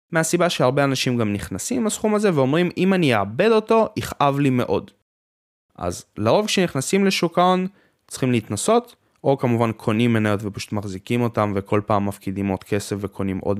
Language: Hebrew